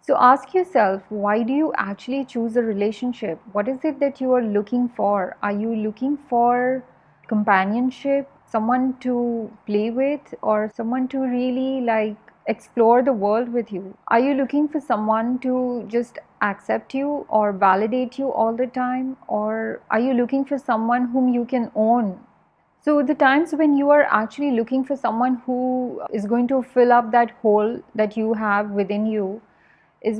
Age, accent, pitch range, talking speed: 30-49, Indian, 215-255 Hz, 170 wpm